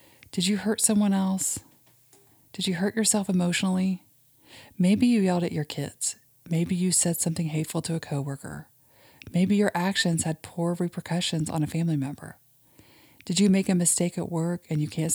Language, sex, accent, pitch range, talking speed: English, female, American, 145-180 Hz, 175 wpm